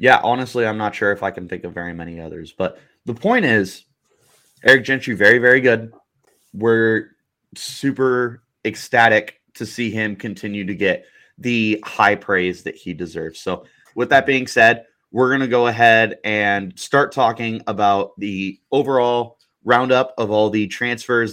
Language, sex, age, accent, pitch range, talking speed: English, male, 20-39, American, 100-125 Hz, 165 wpm